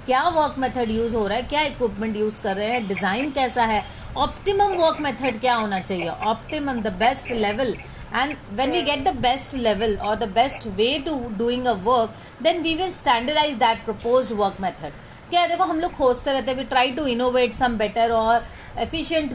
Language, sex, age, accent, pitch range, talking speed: English, female, 30-49, Indian, 225-280 Hz, 160 wpm